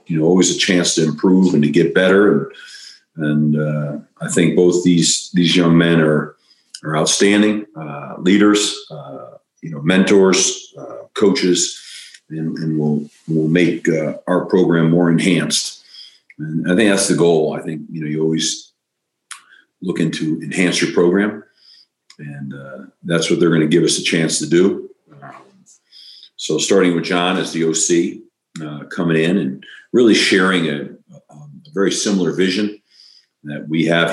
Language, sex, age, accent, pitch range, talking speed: English, male, 50-69, American, 75-90 Hz, 160 wpm